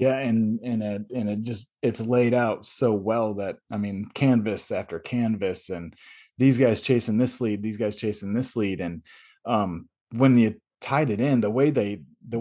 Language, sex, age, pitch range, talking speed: English, male, 20-39, 105-120 Hz, 195 wpm